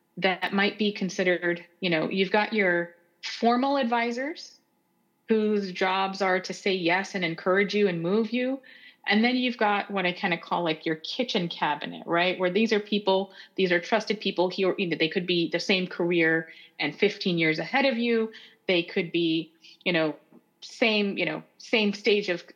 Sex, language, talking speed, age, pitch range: female, English, 185 wpm, 30-49, 175-220 Hz